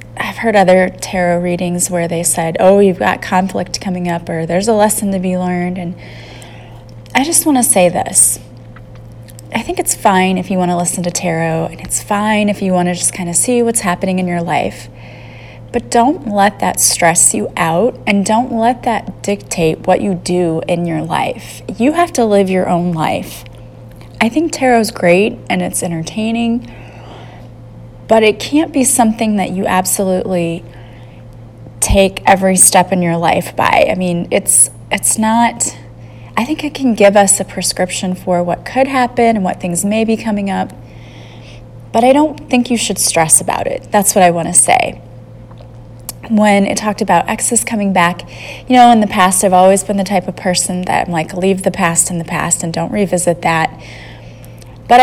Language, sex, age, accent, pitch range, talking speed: English, female, 30-49, American, 160-210 Hz, 190 wpm